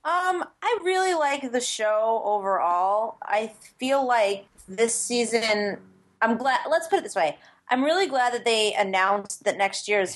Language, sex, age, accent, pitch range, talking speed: English, female, 30-49, American, 190-245 Hz, 170 wpm